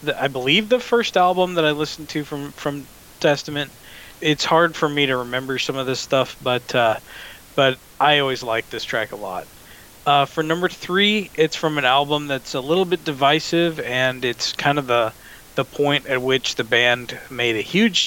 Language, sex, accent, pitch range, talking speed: English, male, American, 125-155 Hz, 200 wpm